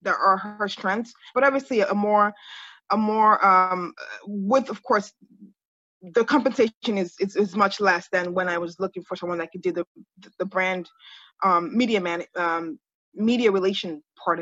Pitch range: 190-235 Hz